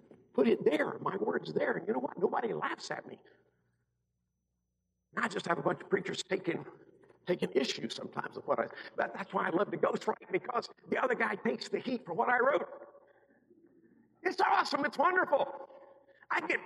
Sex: male